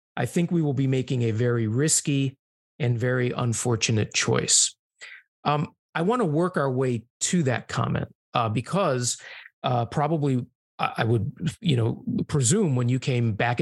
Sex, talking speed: male, 160 wpm